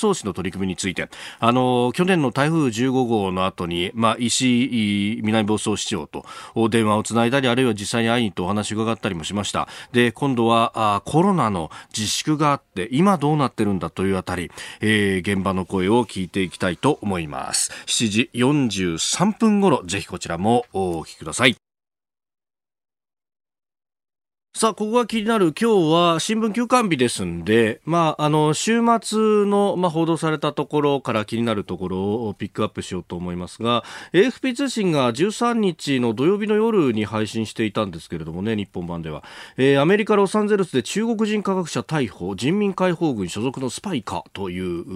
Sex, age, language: male, 40-59, Japanese